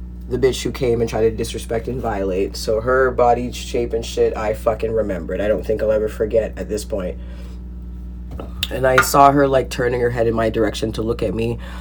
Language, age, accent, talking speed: English, 30-49, American, 220 wpm